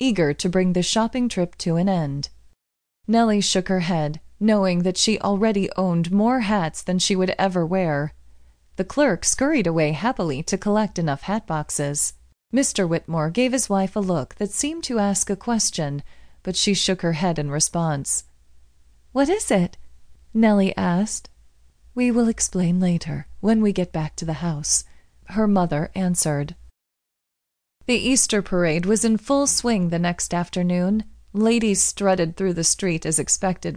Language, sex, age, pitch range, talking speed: English, female, 30-49, 160-210 Hz, 160 wpm